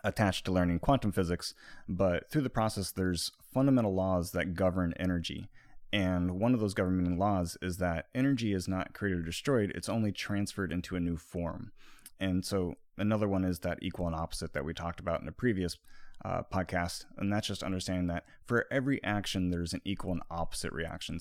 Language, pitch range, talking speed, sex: English, 85-105 Hz, 190 wpm, male